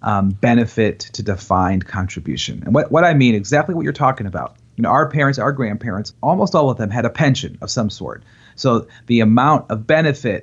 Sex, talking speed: male, 205 wpm